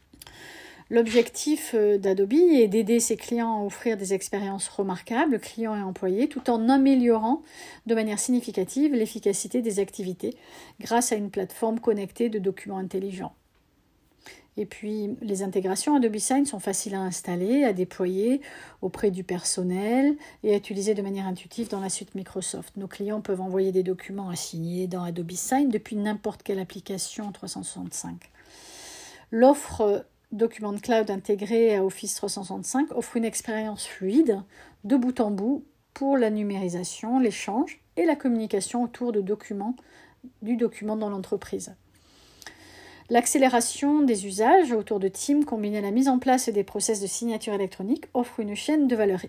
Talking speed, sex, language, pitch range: 150 wpm, female, French, 195-240 Hz